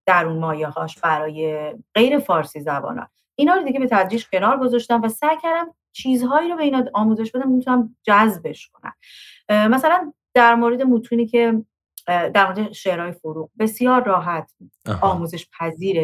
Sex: female